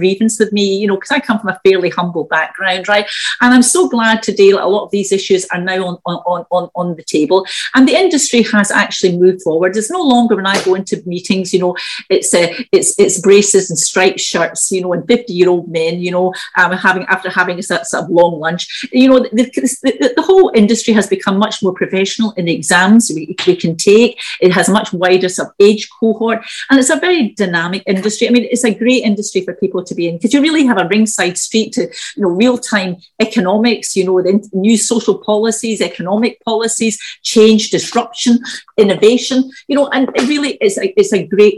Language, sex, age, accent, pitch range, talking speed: English, female, 40-59, British, 185-235 Hz, 220 wpm